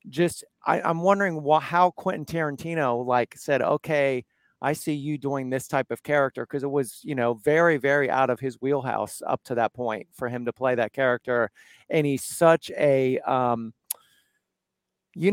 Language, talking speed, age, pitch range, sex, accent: English, 170 wpm, 40-59, 130-170 Hz, male, American